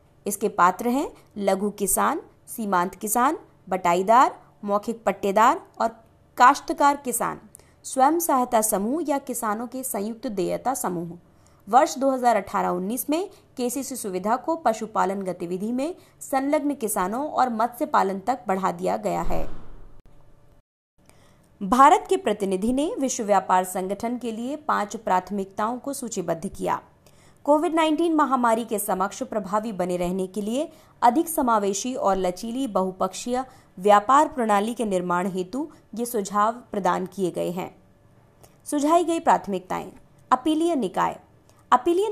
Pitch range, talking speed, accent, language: 190-270 Hz, 125 wpm, native, Hindi